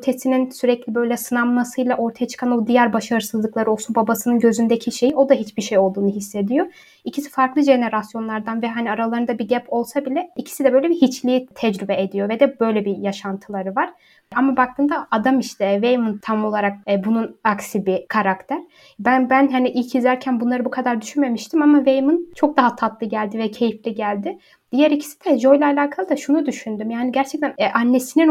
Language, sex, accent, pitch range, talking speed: Turkish, female, native, 215-265 Hz, 175 wpm